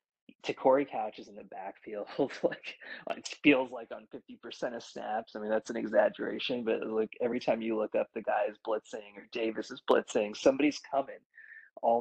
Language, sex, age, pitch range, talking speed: English, male, 20-39, 100-125 Hz, 195 wpm